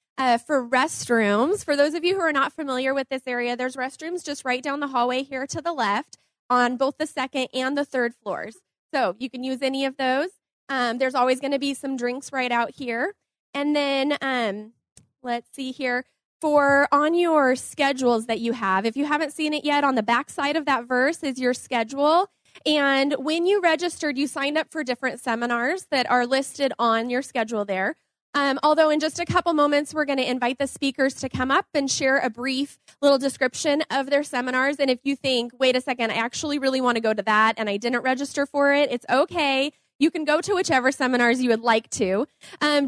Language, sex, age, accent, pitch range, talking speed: English, female, 20-39, American, 245-290 Hz, 220 wpm